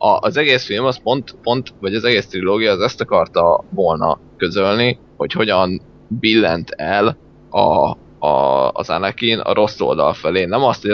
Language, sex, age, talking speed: Hungarian, male, 20-39, 170 wpm